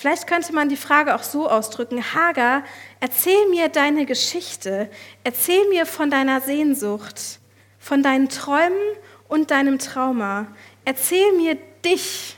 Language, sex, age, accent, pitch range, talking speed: German, female, 40-59, German, 215-315 Hz, 130 wpm